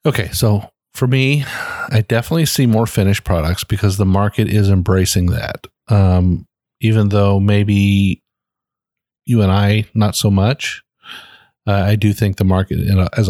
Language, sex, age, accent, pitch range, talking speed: English, male, 40-59, American, 95-110 Hz, 150 wpm